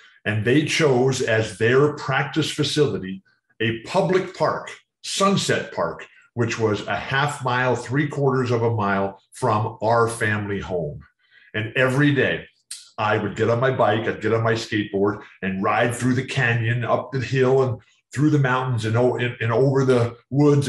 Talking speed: 165 wpm